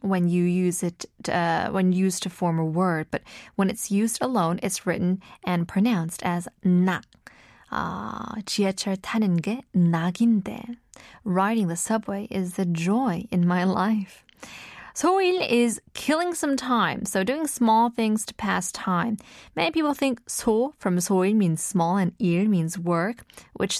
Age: 20-39